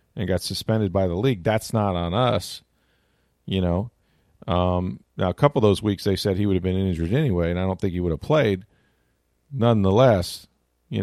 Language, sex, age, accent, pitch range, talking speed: English, male, 40-59, American, 90-115 Hz, 200 wpm